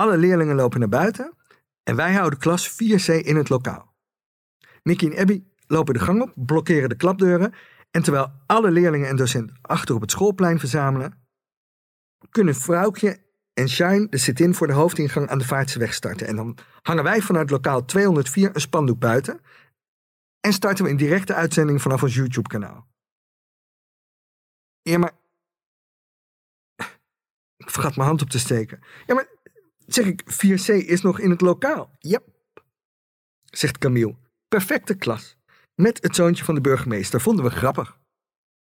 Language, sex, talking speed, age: Dutch, male, 160 wpm, 50-69